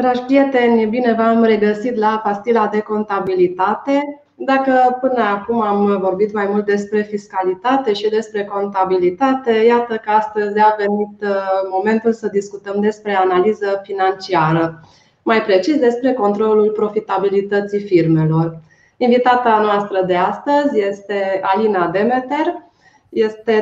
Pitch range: 195-235 Hz